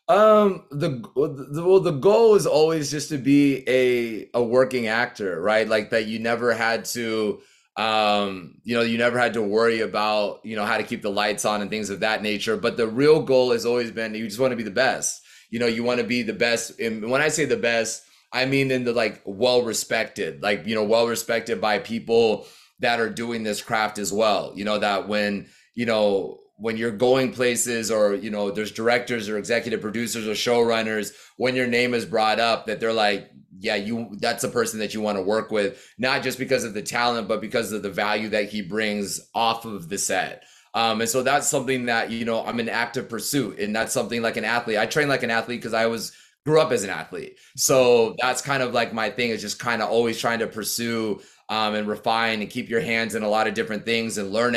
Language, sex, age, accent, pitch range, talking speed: English, male, 30-49, American, 110-125 Hz, 235 wpm